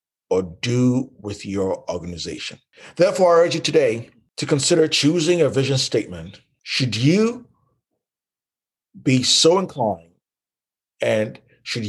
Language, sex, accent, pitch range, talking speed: English, male, American, 120-165 Hz, 115 wpm